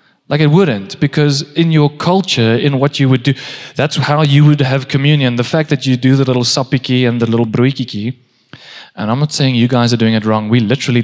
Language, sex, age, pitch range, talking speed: English, male, 20-39, 115-140 Hz, 230 wpm